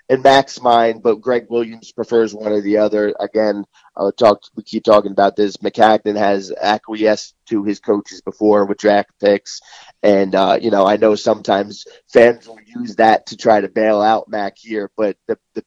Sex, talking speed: male, 190 wpm